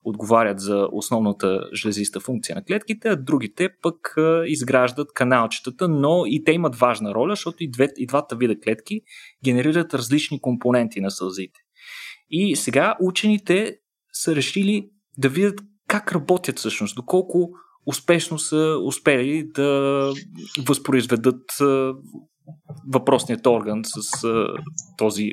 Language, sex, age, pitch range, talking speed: Bulgarian, male, 30-49, 120-180 Hz, 115 wpm